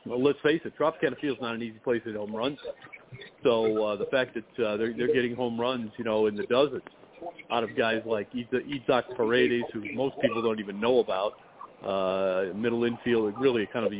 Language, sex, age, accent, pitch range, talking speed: English, male, 50-69, American, 110-130 Hz, 215 wpm